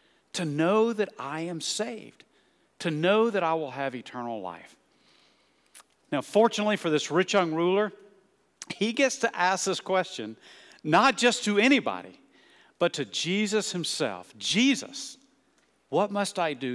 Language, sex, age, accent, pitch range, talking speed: English, male, 50-69, American, 160-250 Hz, 145 wpm